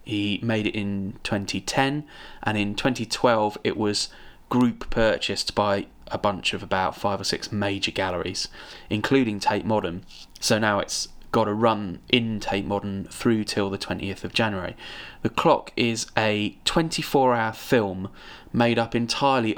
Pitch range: 100-120 Hz